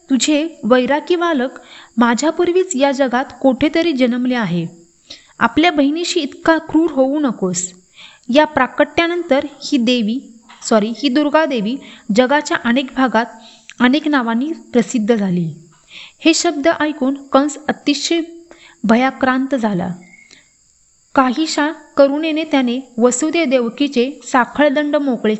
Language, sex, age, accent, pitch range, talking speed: Marathi, female, 30-49, native, 225-295 Hz, 100 wpm